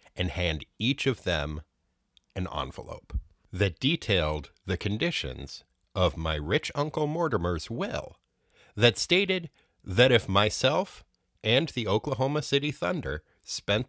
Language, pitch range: English, 80-110 Hz